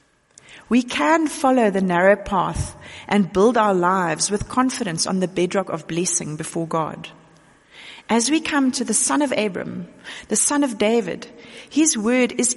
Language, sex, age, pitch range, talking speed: English, female, 40-59, 175-250 Hz, 160 wpm